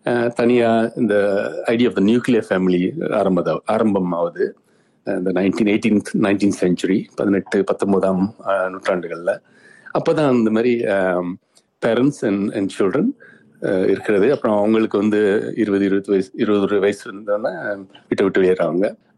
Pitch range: 95-120 Hz